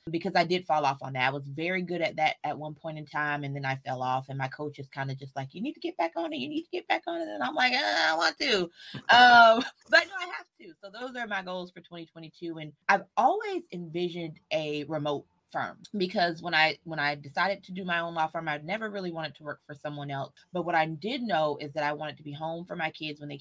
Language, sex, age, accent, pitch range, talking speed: English, female, 20-39, American, 150-195 Hz, 280 wpm